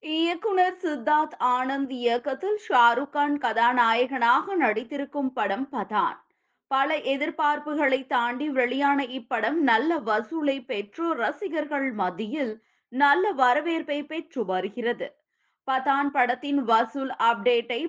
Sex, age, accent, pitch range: female, 20-39, native, 255-315 Hz